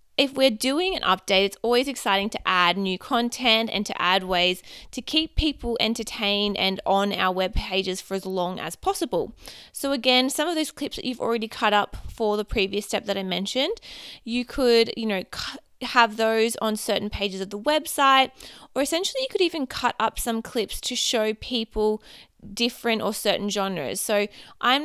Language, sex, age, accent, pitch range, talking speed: English, female, 20-39, Australian, 200-245 Hz, 190 wpm